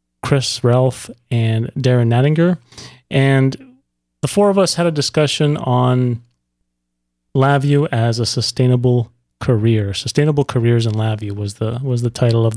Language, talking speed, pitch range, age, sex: English, 140 wpm, 115-145 Hz, 30-49, male